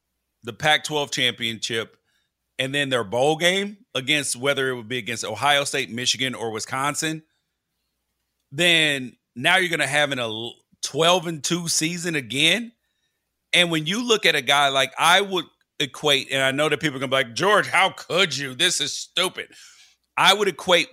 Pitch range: 130-175 Hz